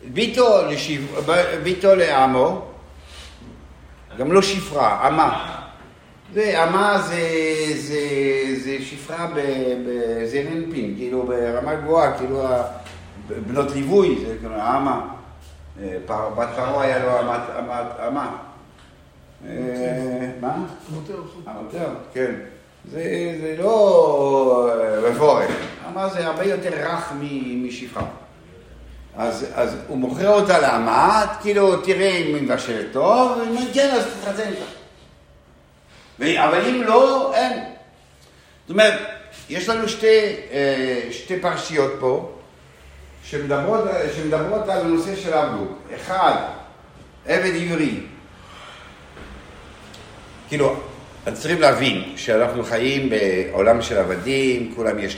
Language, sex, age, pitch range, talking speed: Hebrew, male, 60-79, 105-170 Hz, 90 wpm